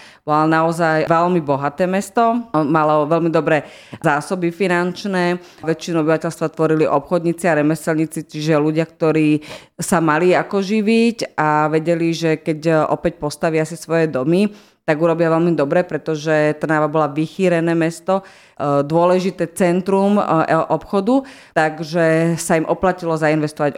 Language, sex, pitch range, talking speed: Slovak, female, 150-170 Hz, 125 wpm